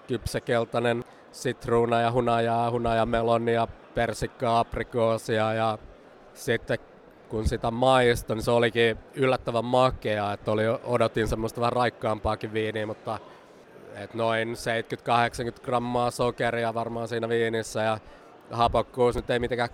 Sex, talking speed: male, 115 wpm